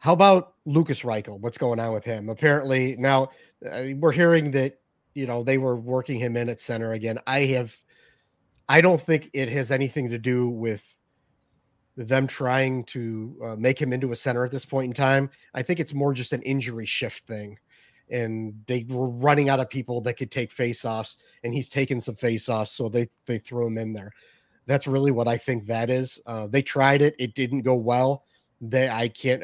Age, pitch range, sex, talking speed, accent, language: 30-49, 120-135 Hz, male, 200 wpm, American, English